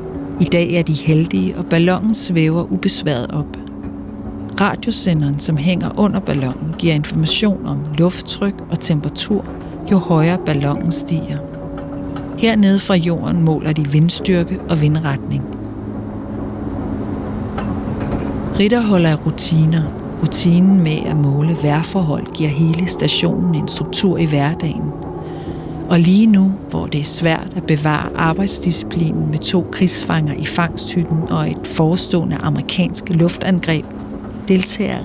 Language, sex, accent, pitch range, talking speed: Danish, female, native, 140-175 Hz, 120 wpm